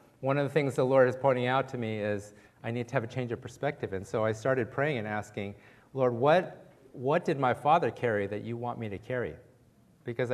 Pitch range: 110-130 Hz